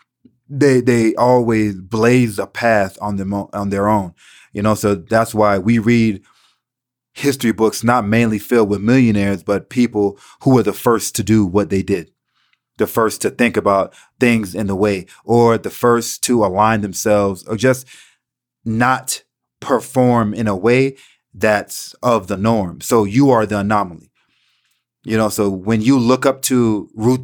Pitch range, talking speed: 105-125 Hz, 170 wpm